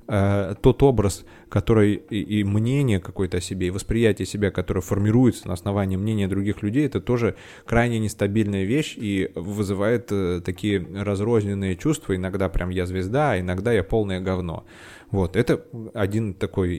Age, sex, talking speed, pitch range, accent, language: 20-39, male, 145 wpm, 95-120 Hz, native, Russian